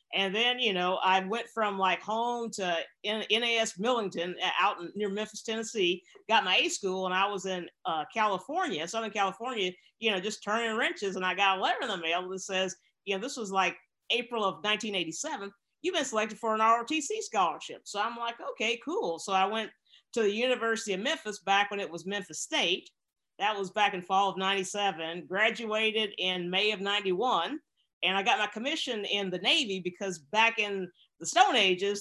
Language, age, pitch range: English, 50-69, 190-230 Hz